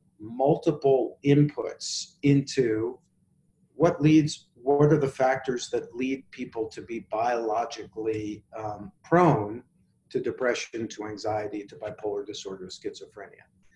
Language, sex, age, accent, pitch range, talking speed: English, male, 50-69, American, 120-155 Hz, 110 wpm